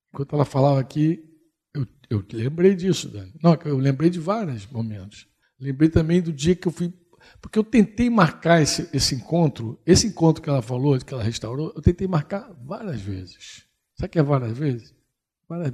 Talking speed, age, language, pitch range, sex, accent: 185 wpm, 60-79, Portuguese, 125-175 Hz, male, Brazilian